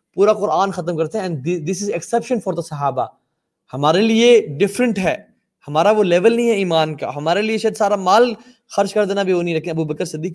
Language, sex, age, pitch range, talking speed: Urdu, male, 20-39, 145-200 Hz, 205 wpm